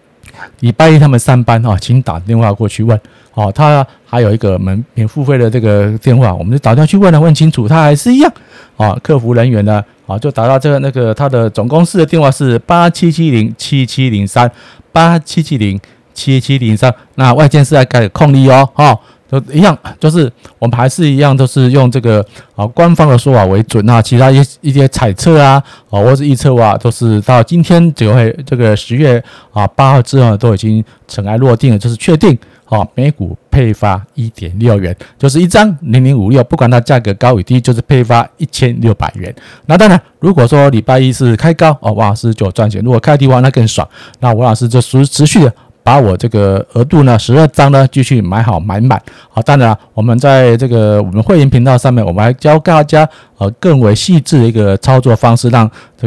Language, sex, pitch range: Chinese, male, 110-140 Hz